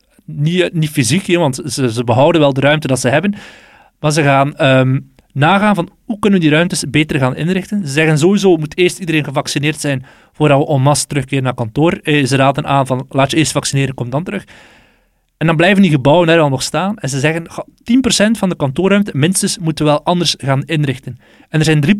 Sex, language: male, Dutch